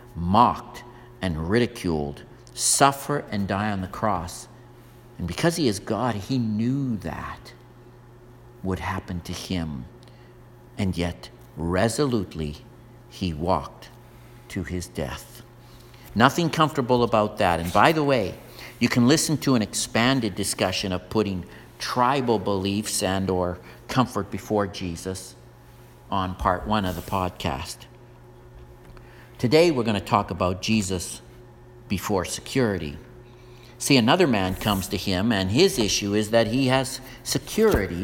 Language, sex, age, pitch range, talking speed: English, male, 50-69, 90-120 Hz, 130 wpm